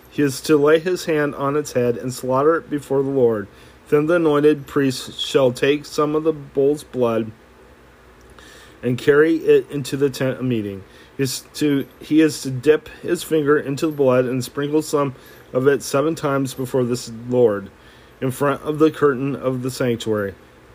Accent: American